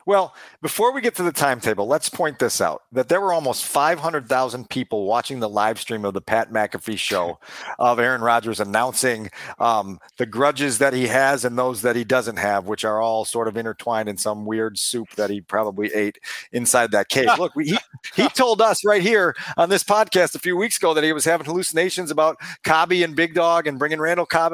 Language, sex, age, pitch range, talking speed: English, male, 40-59, 130-185 Hz, 215 wpm